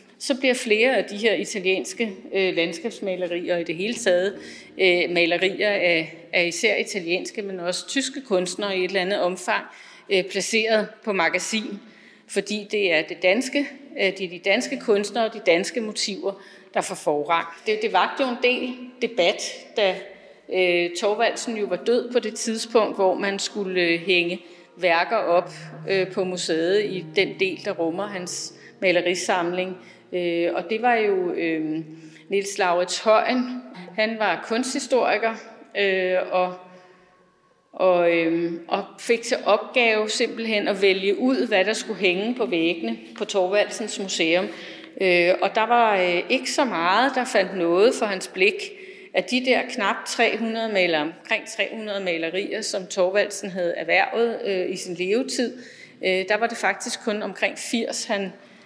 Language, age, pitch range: Danish, 30-49, 180-225 Hz